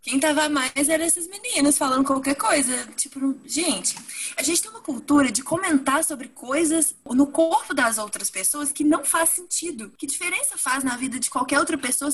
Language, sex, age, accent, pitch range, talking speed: Portuguese, female, 20-39, Brazilian, 225-315 Hz, 190 wpm